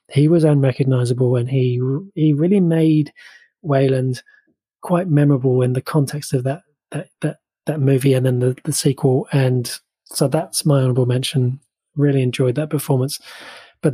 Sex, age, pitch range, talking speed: male, 20-39, 130-155 Hz, 155 wpm